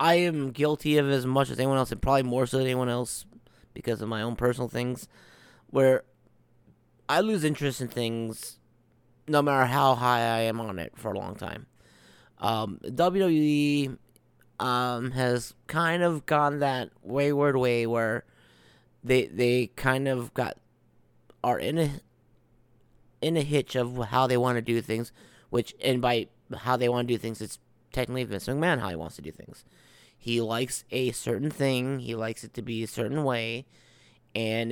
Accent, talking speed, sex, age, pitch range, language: American, 175 wpm, male, 30-49, 115-135 Hz, English